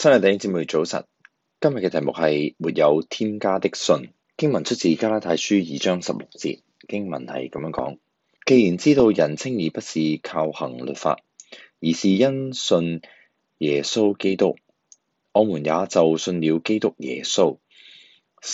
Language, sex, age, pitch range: Chinese, male, 30-49, 80-105 Hz